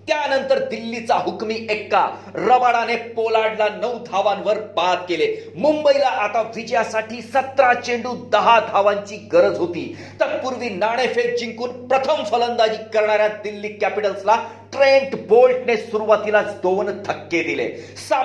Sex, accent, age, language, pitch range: male, native, 40-59, Marathi, 210-250 Hz